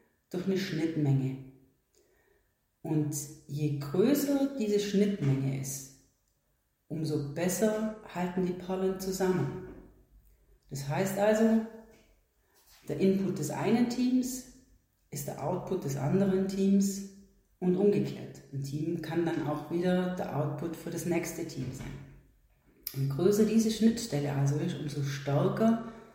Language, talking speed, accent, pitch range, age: German, 120 wpm, German, 150-200 Hz, 40-59